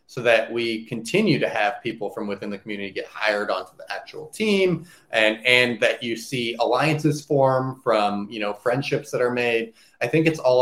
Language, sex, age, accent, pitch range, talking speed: English, male, 30-49, American, 110-145 Hz, 200 wpm